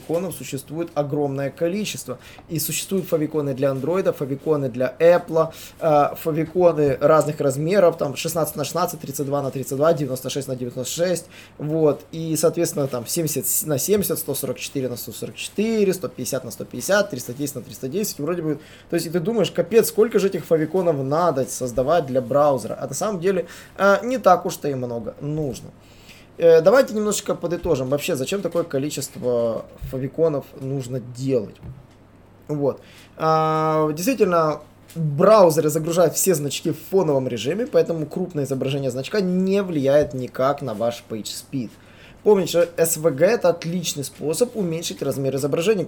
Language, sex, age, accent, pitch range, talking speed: Russian, male, 20-39, native, 135-170 Hz, 135 wpm